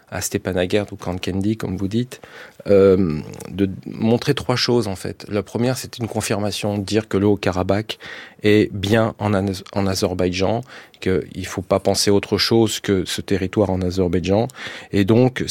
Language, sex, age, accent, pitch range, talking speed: French, male, 40-59, French, 100-115 Hz, 165 wpm